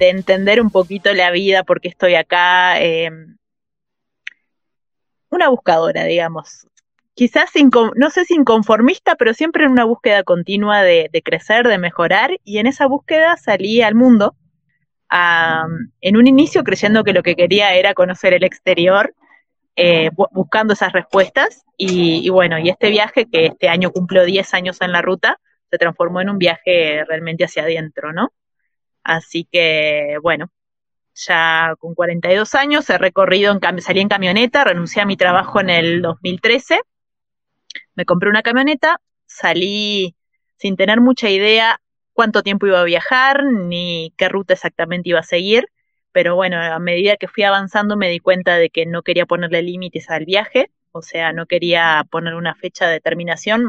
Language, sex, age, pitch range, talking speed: Spanish, female, 20-39, 170-220 Hz, 160 wpm